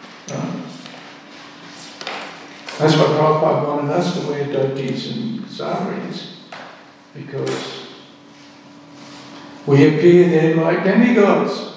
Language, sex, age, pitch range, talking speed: English, male, 60-79, 170-200 Hz, 85 wpm